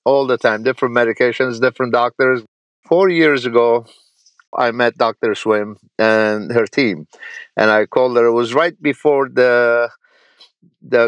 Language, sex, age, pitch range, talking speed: English, male, 50-69, 115-140 Hz, 145 wpm